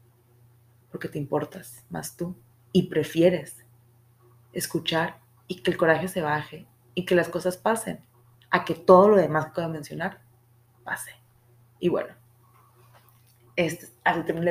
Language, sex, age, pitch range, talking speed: Spanish, female, 20-39, 120-180 Hz, 135 wpm